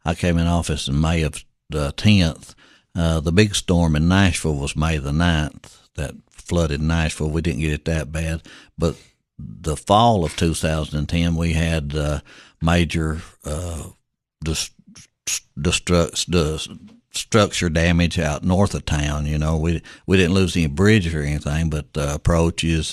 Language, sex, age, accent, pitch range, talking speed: English, male, 60-79, American, 75-85 Hz, 150 wpm